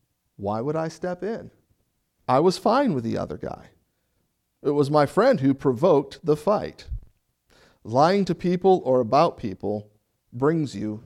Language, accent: English, American